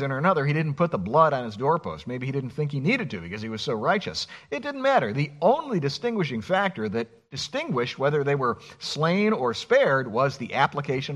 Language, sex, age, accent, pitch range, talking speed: English, male, 50-69, American, 130-190 Hz, 215 wpm